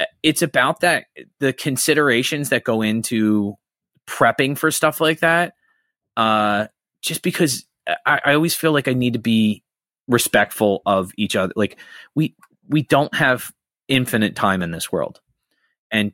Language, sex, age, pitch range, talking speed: English, male, 20-39, 100-130 Hz, 150 wpm